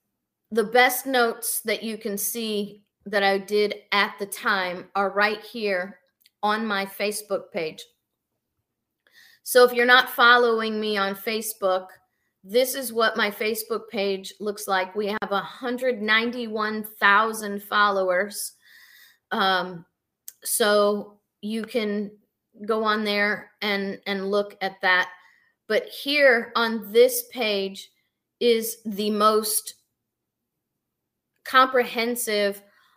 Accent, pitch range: American, 195-235 Hz